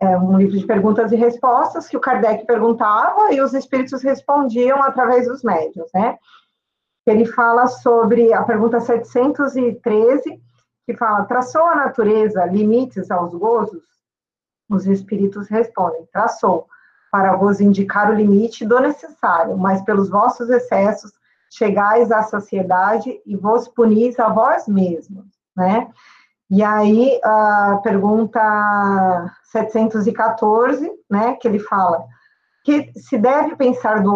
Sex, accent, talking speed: female, Brazilian, 125 wpm